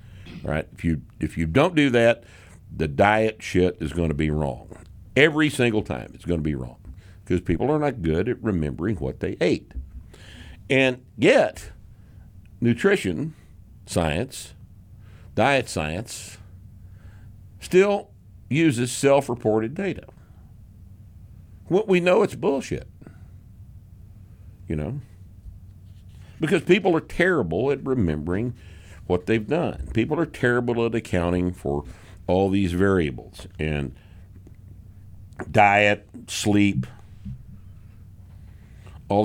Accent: American